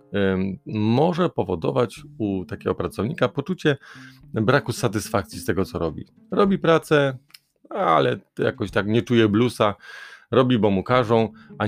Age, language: 30-49, Polish